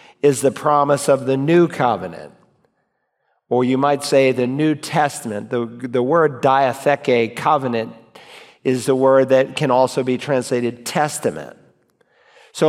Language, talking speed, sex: English, 135 wpm, male